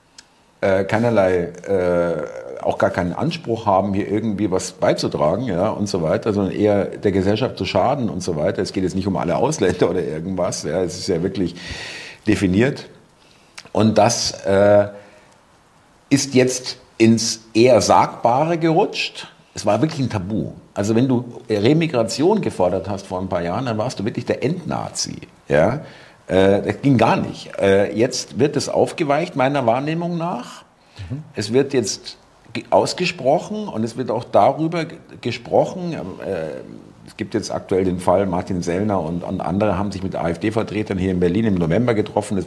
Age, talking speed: 50-69, 160 wpm